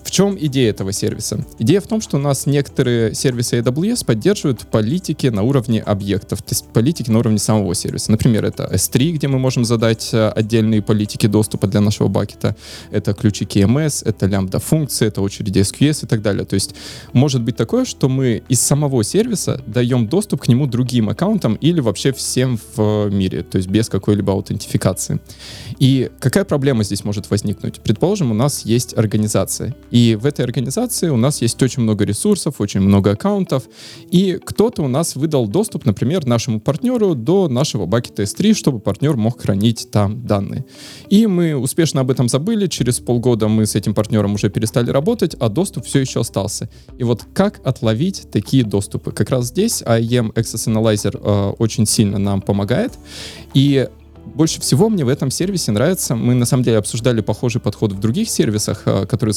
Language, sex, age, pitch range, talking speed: Russian, male, 20-39, 105-140 Hz, 180 wpm